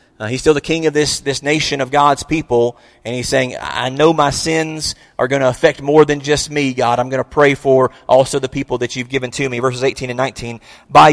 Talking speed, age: 250 wpm, 30-49